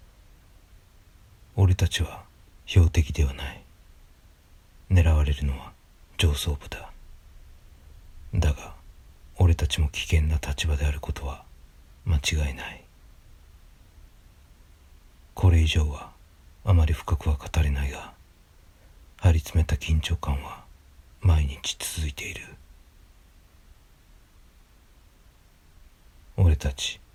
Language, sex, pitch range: Japanese, male, 75-85 Hz